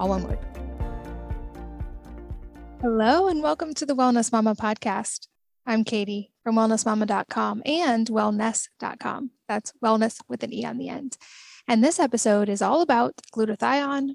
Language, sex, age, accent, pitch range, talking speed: English, female, 10-29, American, 215-255 Hz, 125 wpm